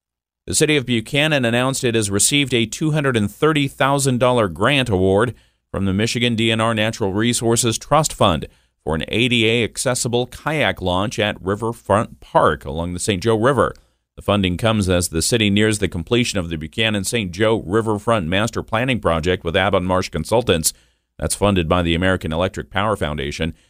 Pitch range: 85-115 Hz